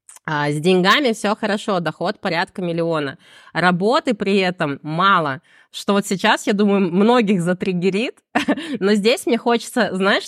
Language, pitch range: Russian, 180-225 Hz